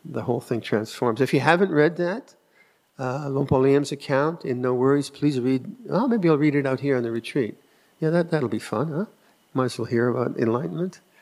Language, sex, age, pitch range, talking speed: English, male, 50-69, 120-140 Hz, 215 wpm